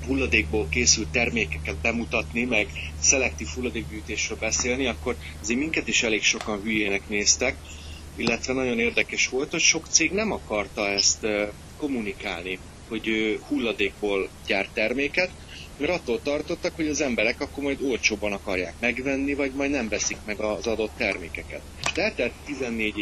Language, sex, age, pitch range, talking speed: Hungarian, male, 30-49, 95-115 Hz, 135 wpm